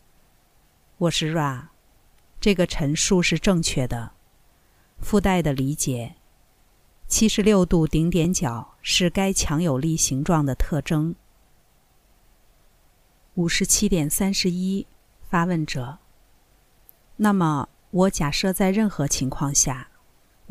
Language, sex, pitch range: Chinese, female, 140-185 Hz